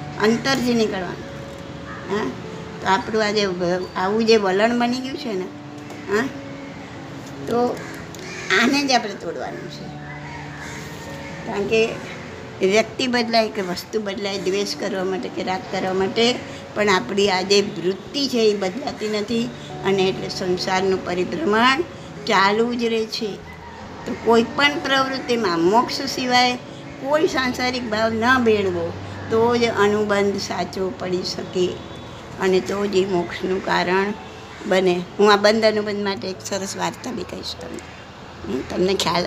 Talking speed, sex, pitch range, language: 135 wpm, male, 180-225 Hz, Gujarati